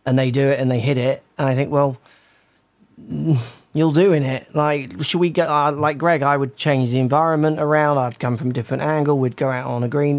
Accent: British